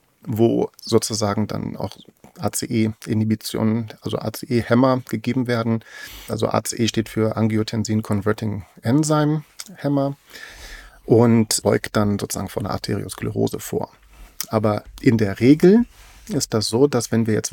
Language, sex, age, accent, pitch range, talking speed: German, male, 40-59, German, 110-135 Hz, 110 wpm